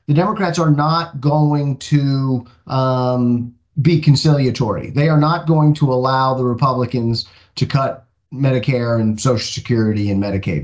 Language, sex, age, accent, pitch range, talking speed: English, male, 30-49, American, 125-155 Hz, 140 wpm